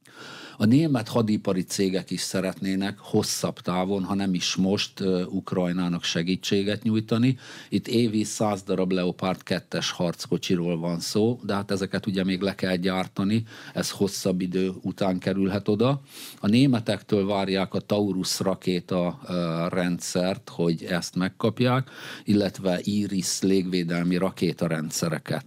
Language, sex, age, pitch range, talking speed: Hungarian, male, 50-69, 90-110 Hz, 125 wpm